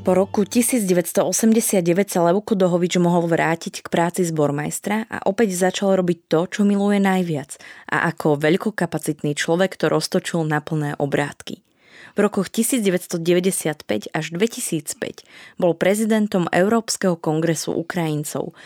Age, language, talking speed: 20-39, Slovak, 120 wpm